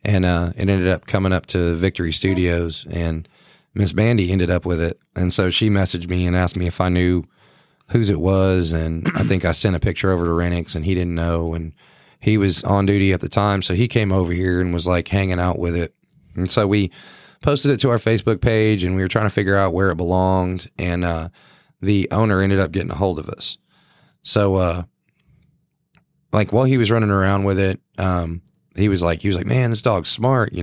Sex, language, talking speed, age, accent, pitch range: male, English, 230 wpm, 30-49, American, 90-110 Hz